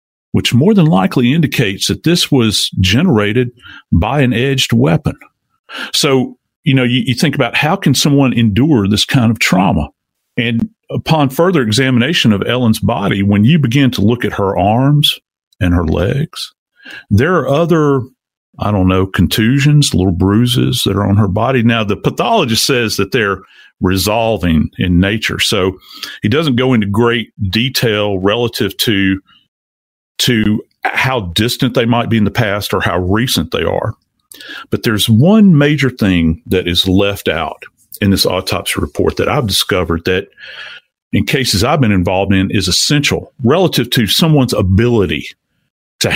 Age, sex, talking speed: 50-69, male, 160 wpm